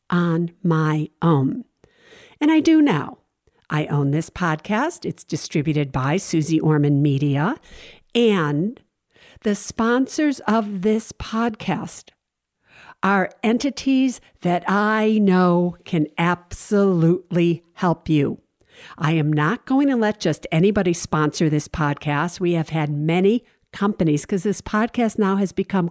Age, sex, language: 50-69, female, English